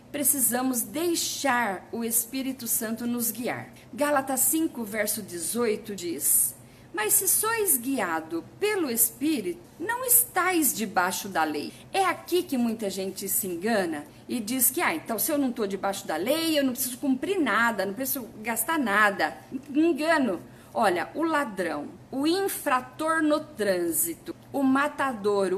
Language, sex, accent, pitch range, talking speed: Portuguese, female, Brazilian, 225-325 Hz, 145 wpm